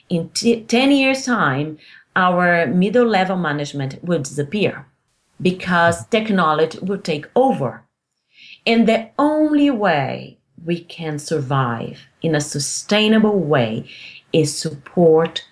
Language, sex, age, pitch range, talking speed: English, female, 40-59, 150-210 Hz, 110 wpm